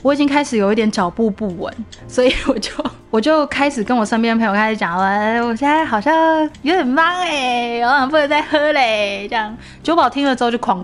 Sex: female